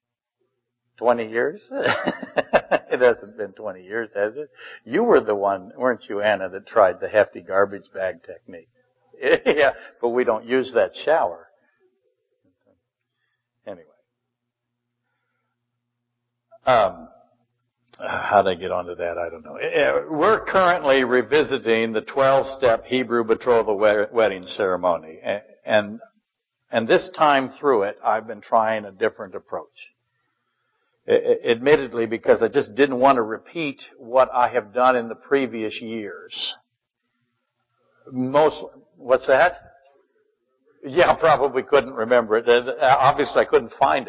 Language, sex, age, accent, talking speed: English, male, 60-79, American, 125 wpm